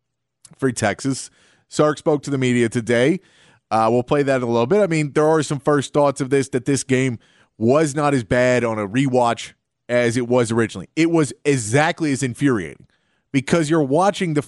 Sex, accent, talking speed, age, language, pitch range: male, American, 200 wpm, 30-49, English, 120-160 Hz